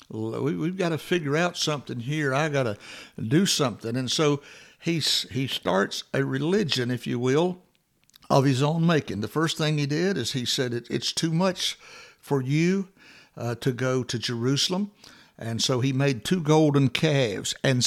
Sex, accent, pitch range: male, American, 125-155 Hz